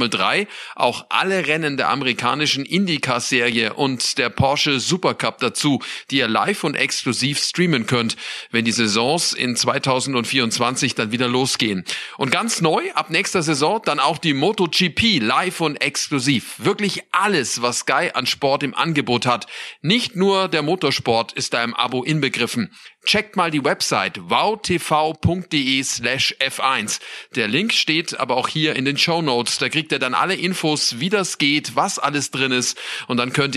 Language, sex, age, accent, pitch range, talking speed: German, male, 40-59, German, 125-170 Hz, 165 wpm